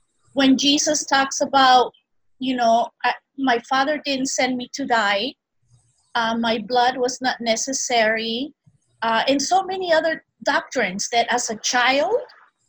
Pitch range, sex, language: 230-295 Hz, female, English